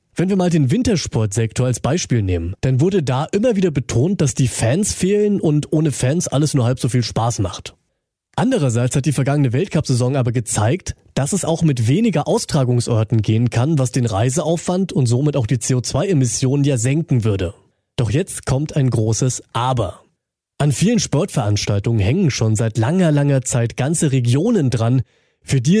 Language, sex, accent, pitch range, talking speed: German, male, German, 120-155 Hz, 170 wpm